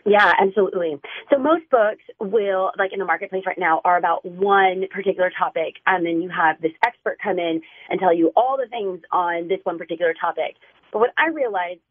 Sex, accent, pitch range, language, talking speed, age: female, American, 170-215 Hz, English, 200 wpm, 30-49